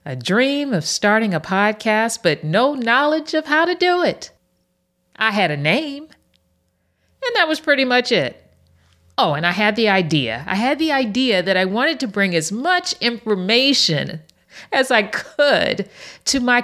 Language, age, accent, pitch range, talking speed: English, 50-69, American, 175-245 Hz, 170 wpm